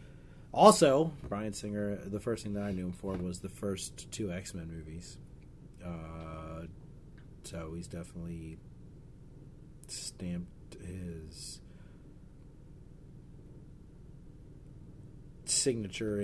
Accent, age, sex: American, 30-49, male